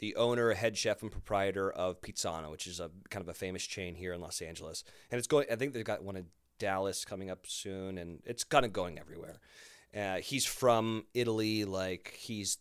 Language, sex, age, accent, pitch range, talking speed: English, male, 30-49, American, 95-115 Hz, 215 wpm